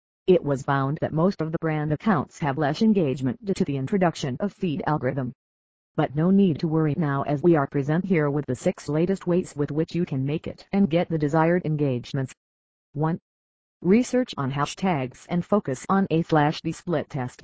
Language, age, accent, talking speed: English, 40-59, American, 195 wpm